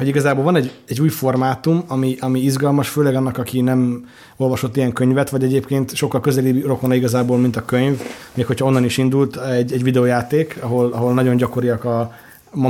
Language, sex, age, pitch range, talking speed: Hungarian, male, 20-39, 125-135 Hz, 190 wpm